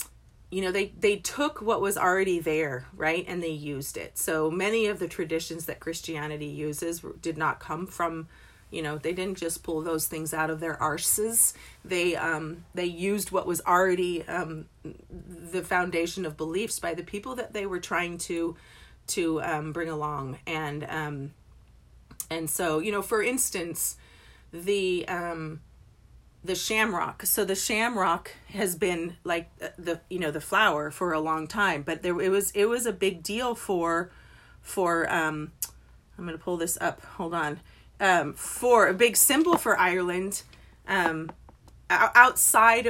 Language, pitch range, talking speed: English, 160-195 Hz, 165 wpm